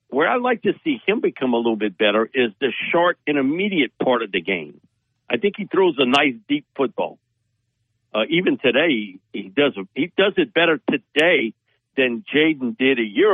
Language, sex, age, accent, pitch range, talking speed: English, male, 60-79, American, 115-160 Hz, 195 wpm